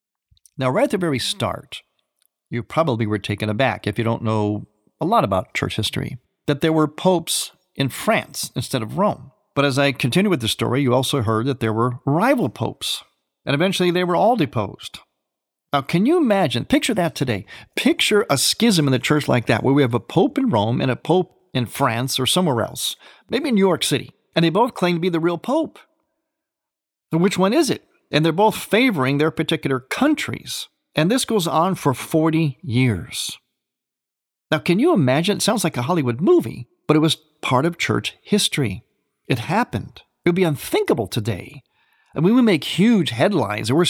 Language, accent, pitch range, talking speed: English, American, 130-195 Hz, 195 wpm